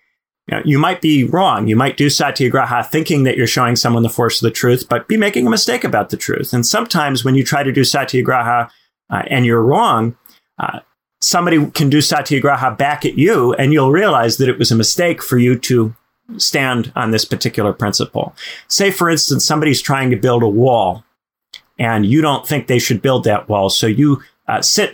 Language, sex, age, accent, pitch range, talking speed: English, male, 40-59, American, 120-155 Hz, 205 wpm